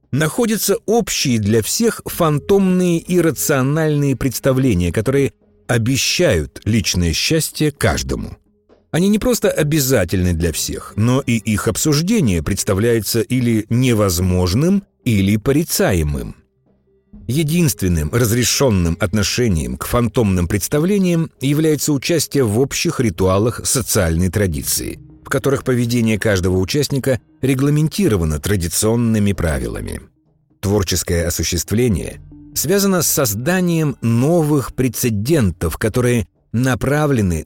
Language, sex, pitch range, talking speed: Russian, male, 100-150 Hz, 95 wpm